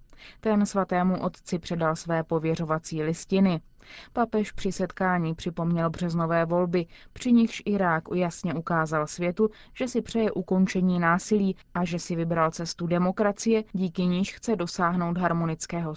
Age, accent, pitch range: 20-39, native, 170-205 Hz